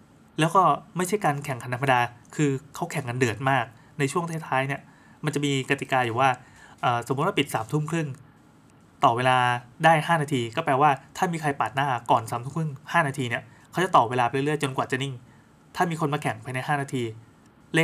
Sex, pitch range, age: male, 130-155 Hz, 20-39